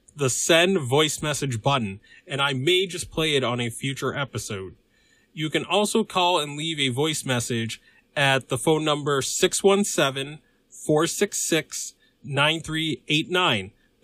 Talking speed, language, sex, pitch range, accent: 125 wpm, English, male, 125-165 Hz, American